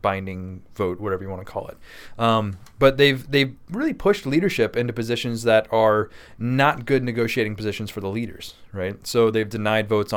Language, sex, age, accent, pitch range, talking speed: English, male, 20-39, American, 100-125 Hz, 185 wpm